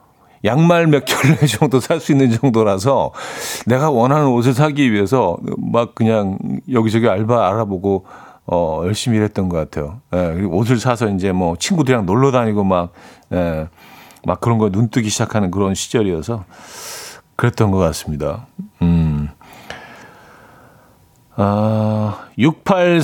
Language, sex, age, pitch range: Korean, male, 50-69, 95-135 Hz